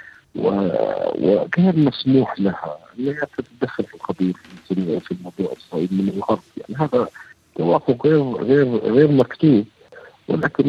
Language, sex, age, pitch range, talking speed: Arabic, male, 50-69, 100-130 Hz, 135 wpm